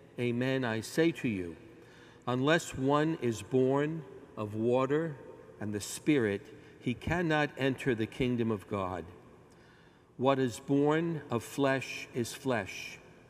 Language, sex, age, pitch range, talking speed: English, male, 50-69, 110-135 Hz, 125 wpm